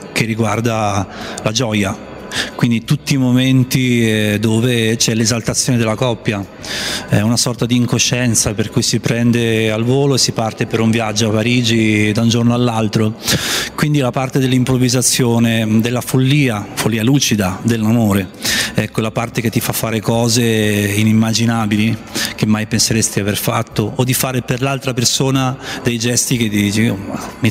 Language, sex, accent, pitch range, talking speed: Italian, male, native, 115-135 Hz, 155 wpm